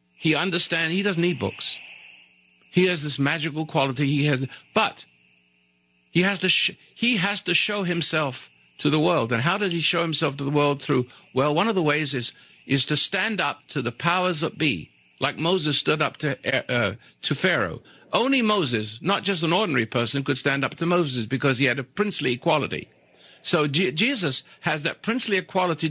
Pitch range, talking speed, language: 100-160 Hz, 195 wpm, English